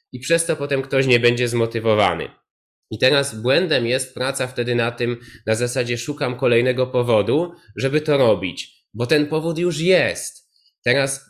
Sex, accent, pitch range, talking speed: male, native, 110-135 Hz, 160 wpm